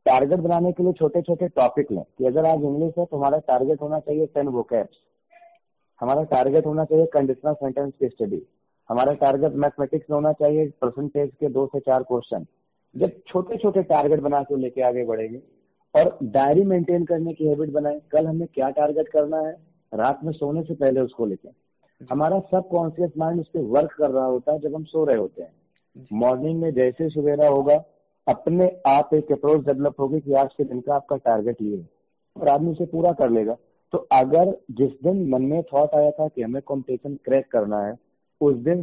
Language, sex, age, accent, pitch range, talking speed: Hindi, male, 40-59, native, 135-160 Hz, 150 wpm